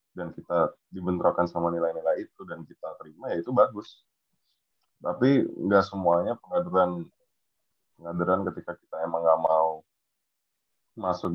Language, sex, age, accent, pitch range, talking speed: Indonesian, male, 20-39, native, 85-95 Hz, 120 wpm